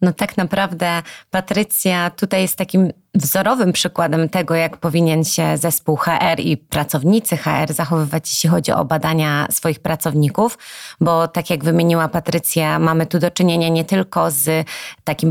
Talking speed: 150 wpm